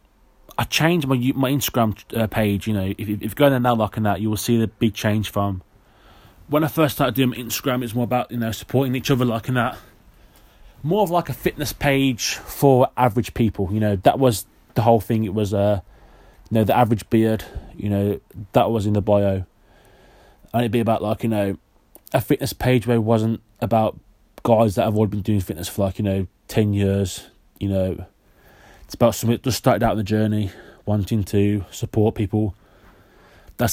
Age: 20-39